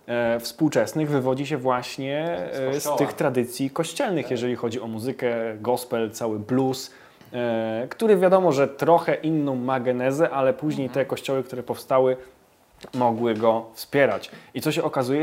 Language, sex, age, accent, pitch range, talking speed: Polish, male, 20-39, native, 115-150 Hz, 140 wpm